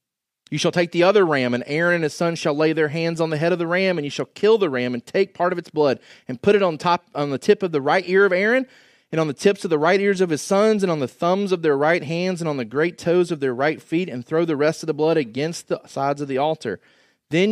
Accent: American